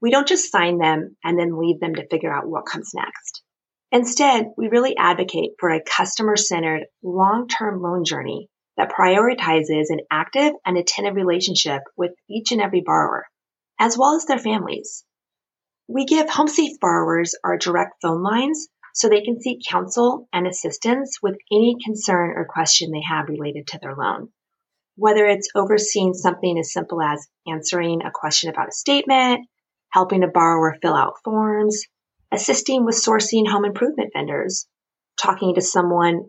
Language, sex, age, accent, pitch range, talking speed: English, female, 30-49, American, 170-240 Hz, 160 wpm